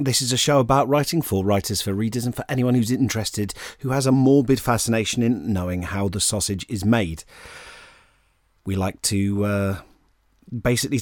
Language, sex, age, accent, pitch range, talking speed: English, male, 30-49, British, 90-115 Hz, 175 wpm